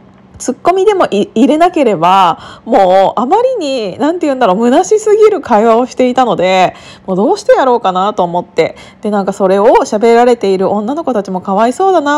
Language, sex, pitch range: Japanese, female, 190-300 Hz